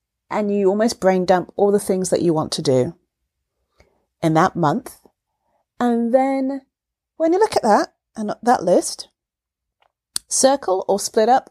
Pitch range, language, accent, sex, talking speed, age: 175-260 Hz, English, British, female, 150 wpm, 30-49